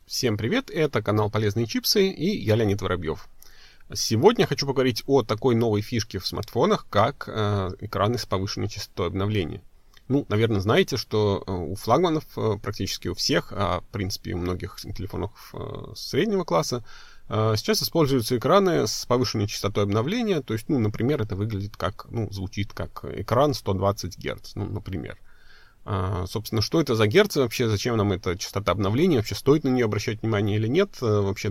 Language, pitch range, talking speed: Russian, 100-130 Hz, 165 wpm